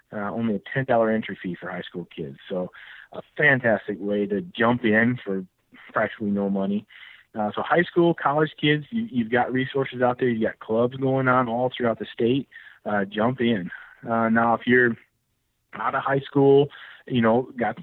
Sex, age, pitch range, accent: male, 30-49, 110-140 Hz, American